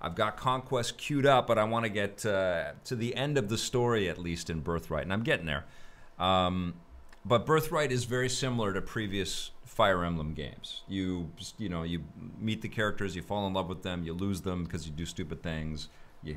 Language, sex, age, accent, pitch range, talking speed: English, male, 40-59, American, 85-110 Hz, 215 wpm